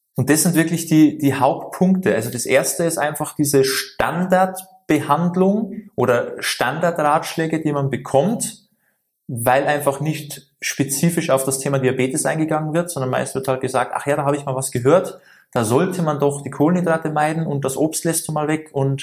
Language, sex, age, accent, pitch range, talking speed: German, male, 20-39, German, 135-160 Hz, 180 wpm